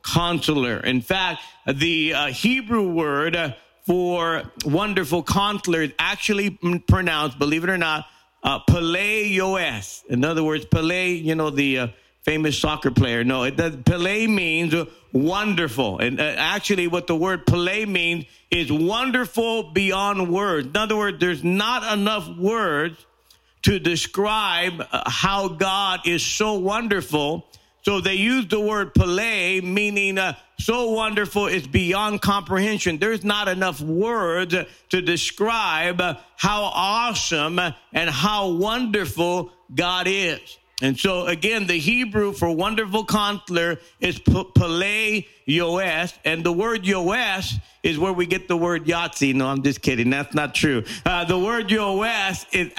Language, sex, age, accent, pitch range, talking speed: English, male, 50-69, American, 160-200 Hz, 145 wpm